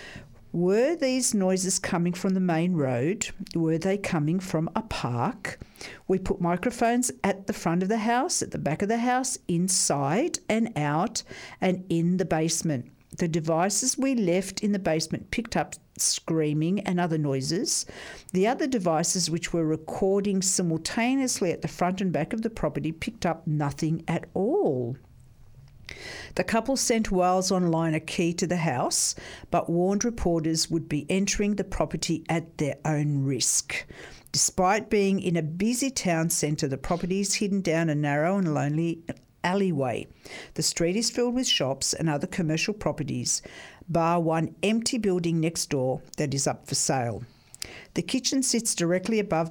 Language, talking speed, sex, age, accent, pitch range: English, 160 wpm, female, 50-69, Australian, 155-195 Hz